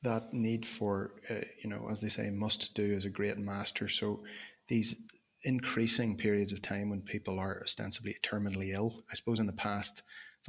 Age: 20-39